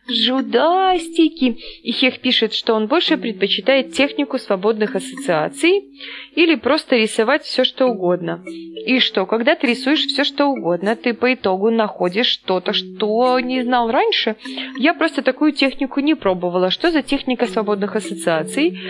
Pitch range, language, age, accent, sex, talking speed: 195-285 Hz, Russian, 20-39, native, female, 145 wpm